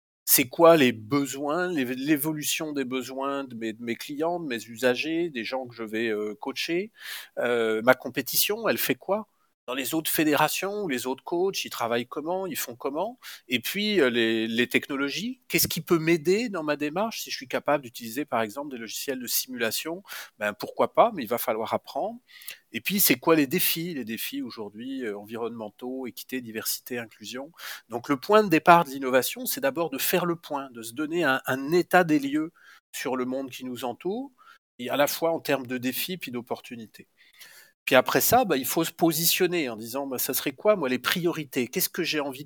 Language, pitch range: French, 125-170 Hz